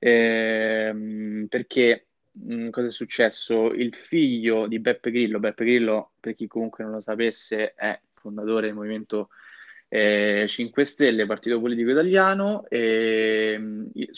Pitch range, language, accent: 110-125 Hz, Italian, native